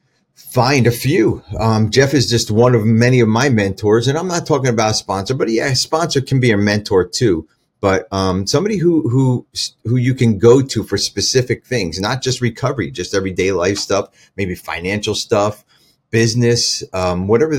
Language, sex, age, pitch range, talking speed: English, male, 30-49, 95-120 Hz, 190 wpm